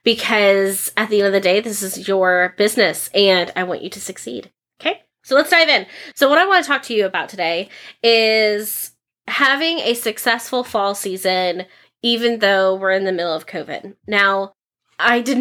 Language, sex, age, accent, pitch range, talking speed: English, female, 20-39, American, 190-240 Hz, 190 wpm